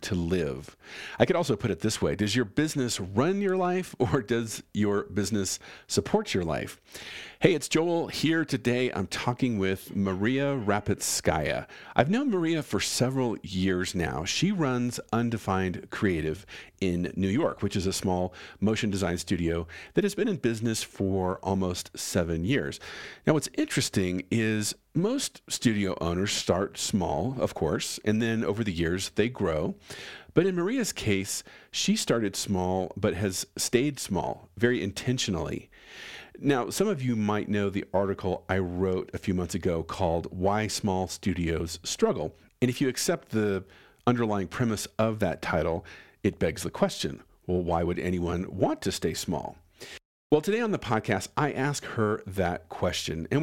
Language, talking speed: English, 165 wpm